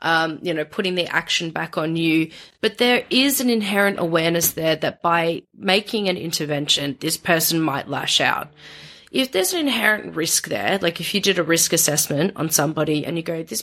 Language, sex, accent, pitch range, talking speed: English, female, Australian, 165-200 Hz, 200 wpm